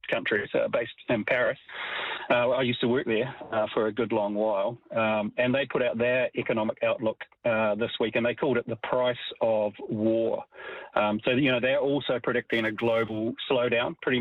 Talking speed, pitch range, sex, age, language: 200 wpm, 110-125 Hz, male, 40-59, English